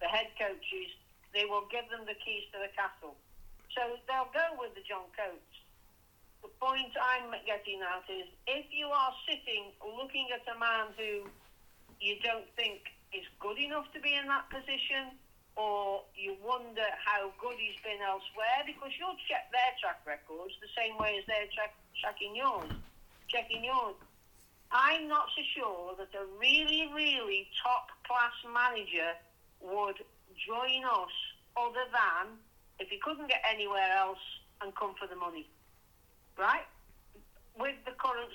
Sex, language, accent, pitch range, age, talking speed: female, English, British, 205-270 Hz, 60-79, 155 wpm